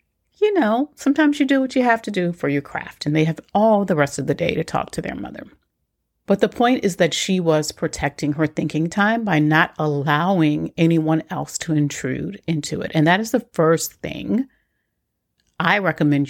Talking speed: 205 wpm